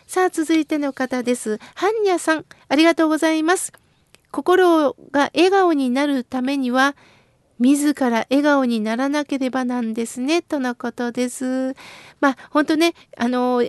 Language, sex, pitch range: Japanese, female, 265-350 Hz